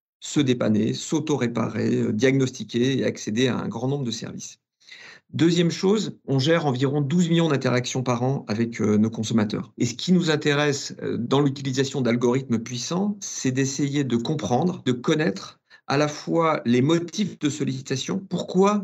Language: French